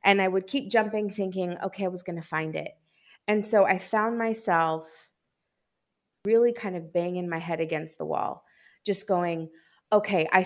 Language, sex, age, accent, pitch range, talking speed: English, female, 20-39, American, 165-195 Hz, 180 wpm